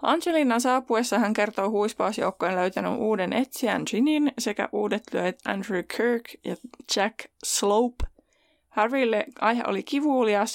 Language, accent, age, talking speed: Finnish, native, 20-39, 120 wpm